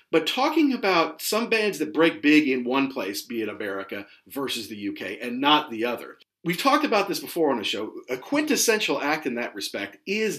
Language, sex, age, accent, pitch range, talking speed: English, male, 40-59, American, 130-185 Hz, 210 wpm